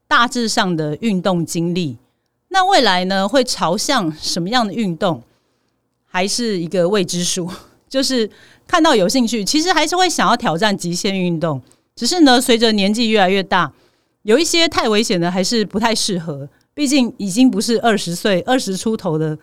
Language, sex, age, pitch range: Chinese, female, 40-59, 175-240 Hz